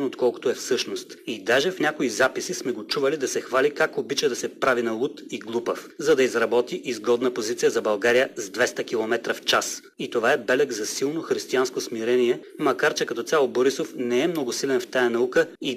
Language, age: Bulgarian, 30-49